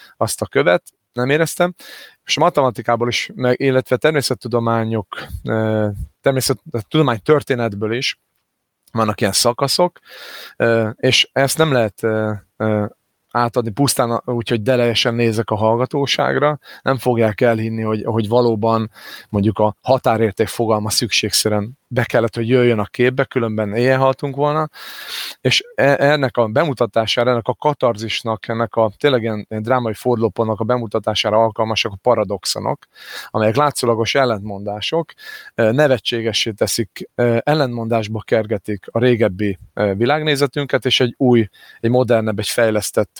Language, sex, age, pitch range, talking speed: Hungarian, male, 30-49, 110-125 Hz, 120 wpm